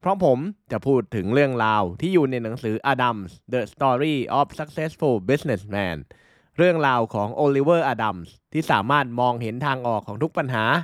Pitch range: 115-155 Hz